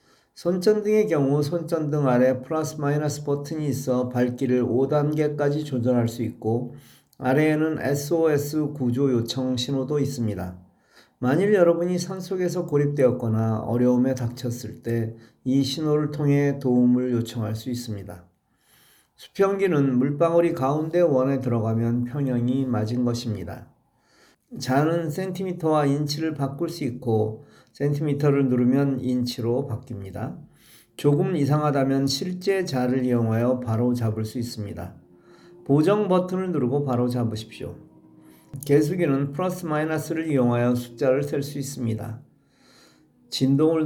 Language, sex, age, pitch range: Korean, male, 40-59, 120-155 Hz